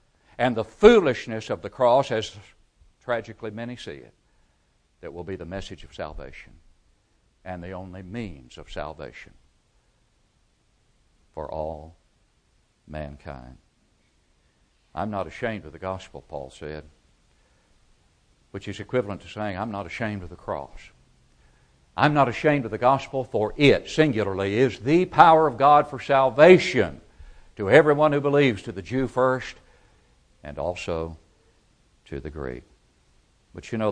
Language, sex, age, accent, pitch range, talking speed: English, male, 60-79, American, 85-125 Hz, 140 wpm